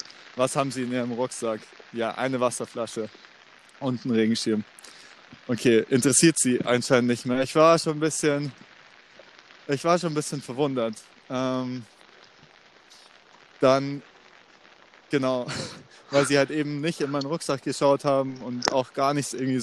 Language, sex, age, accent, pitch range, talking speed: German, male, 20-39, German, 125-145 Hz, 145 wpm